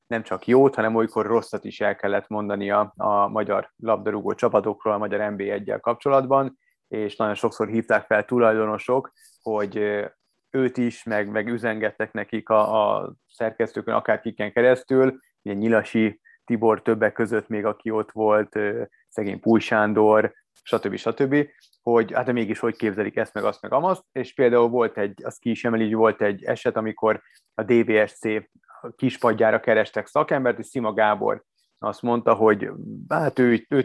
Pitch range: 105-125 Hz